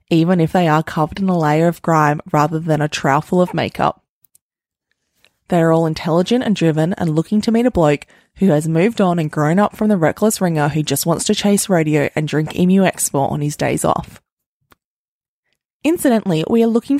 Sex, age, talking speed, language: female, 20-39, 200 wpm, English